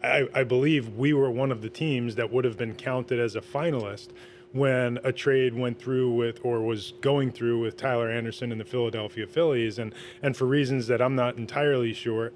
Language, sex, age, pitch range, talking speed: English, male, 20-39, 115-130 Hz, 210 wpm